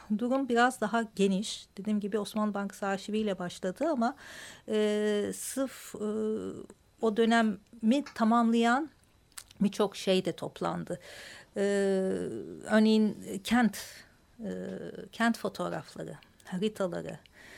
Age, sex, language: 50-69, female, Turkish